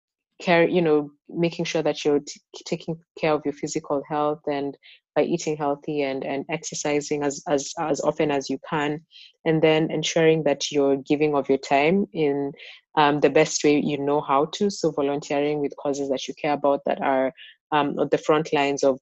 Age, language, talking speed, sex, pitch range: 20-39, English, 190 wpm, female, 140-160 Hz